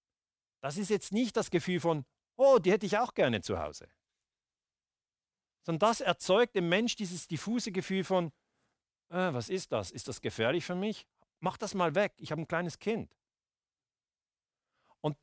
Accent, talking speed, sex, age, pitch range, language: German, 170 wpm, male, 40-59, 145-205 Hz, German